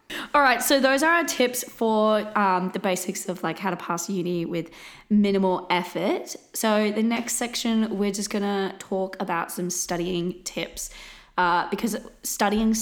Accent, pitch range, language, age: Australian, 175-210 Hz, English, 20-39